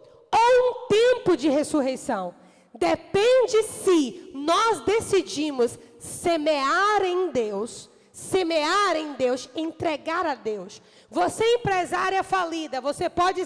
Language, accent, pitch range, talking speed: Portuguese, Brazilian, 300-385 Hz, 105 wpm